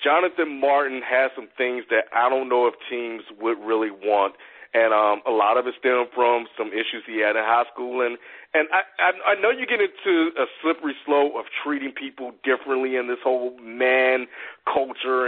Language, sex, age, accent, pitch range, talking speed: English, male, 40-59, American, 120-150 Hz, 195 wpm